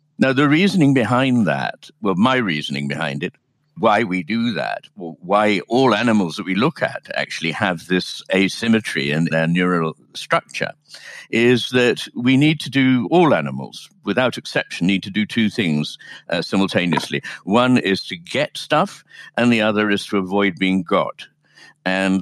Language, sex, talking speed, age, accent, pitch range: English, male, 160 wpm, 60-79, British, 90-130 Hz